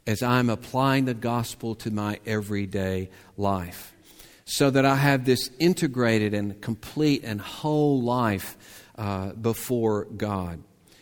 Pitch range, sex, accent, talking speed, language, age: 105-130 Hz, male, American, 125 wpm, English, 50-69